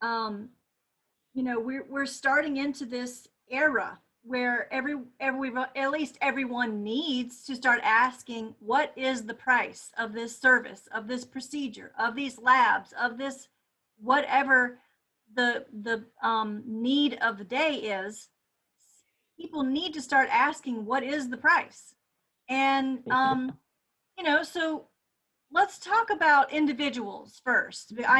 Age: 40-59